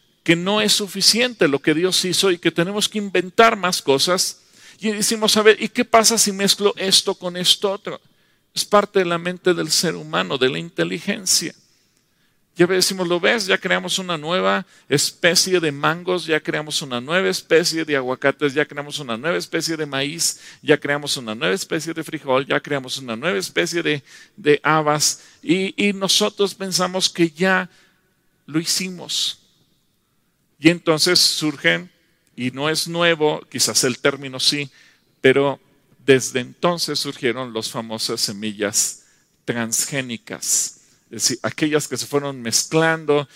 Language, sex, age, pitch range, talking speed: English, male, 50-69, 140-180 Hz, 155 wpm